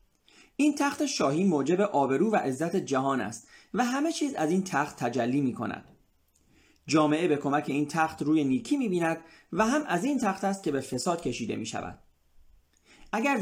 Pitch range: 140-235 Hz